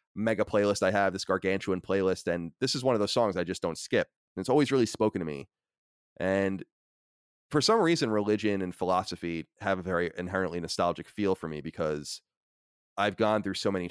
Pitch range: 85-105 Hz